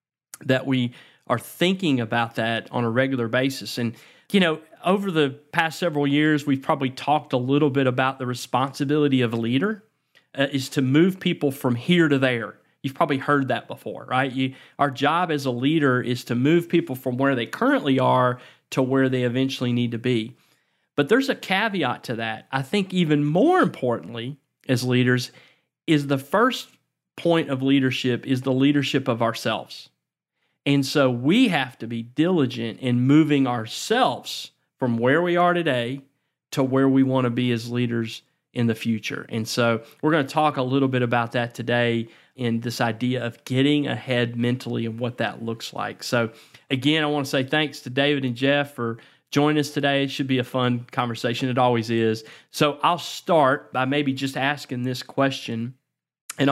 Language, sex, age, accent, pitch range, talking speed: English, male, 40-59, American, 120-145 Hz, 185 wpm